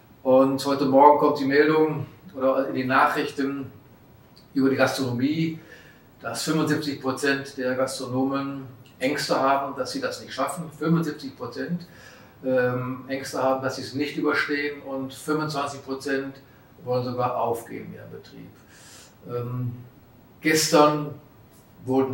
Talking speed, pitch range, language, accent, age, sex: 120 wpm, 125-145 Hz, German, German, 40-59, male